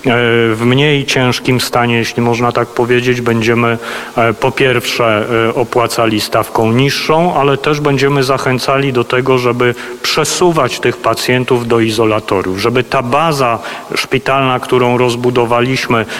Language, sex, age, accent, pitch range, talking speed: Polish, male, 40-59, native, 115-130 Hz, 120 wpm